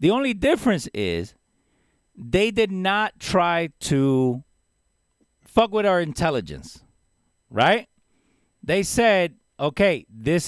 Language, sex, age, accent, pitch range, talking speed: English, male, 40-59, American, 160-230 Hz, 105 wpm